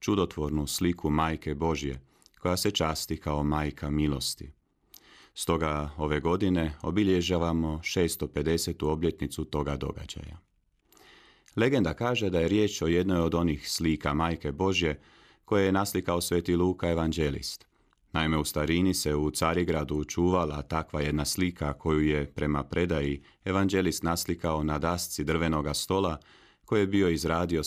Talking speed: 130 wpm